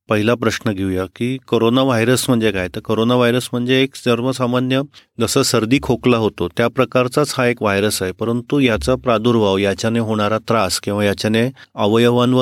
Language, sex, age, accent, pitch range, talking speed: Marathi, male, 30-49, native, 115-135 Hz, 105 wpm